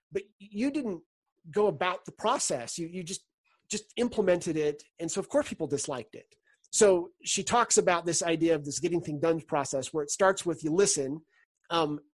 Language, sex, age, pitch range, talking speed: English, male, 30-49, 150-190 Hz, 195 wpm